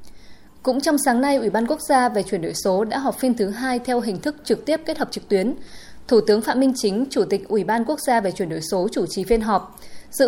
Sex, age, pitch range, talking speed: female, 20-39, 205-260 Hz, 270 wpm